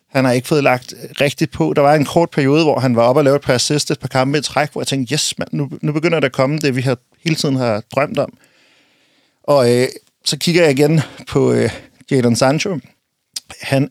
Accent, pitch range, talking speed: native, 125-150 Hz, 240 wpm